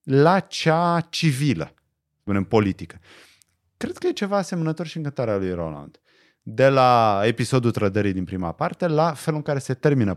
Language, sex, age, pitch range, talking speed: Romanian, male, 30-49, 100-150 Hz, 165 wpm